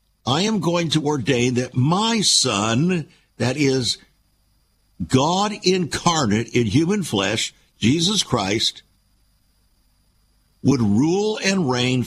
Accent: American